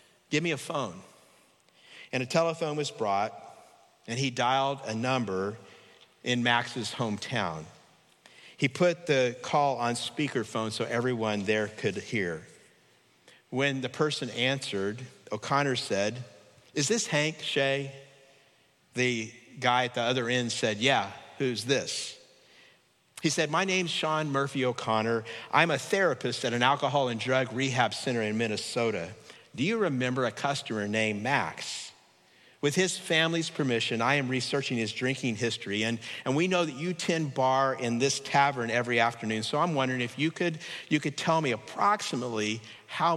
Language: English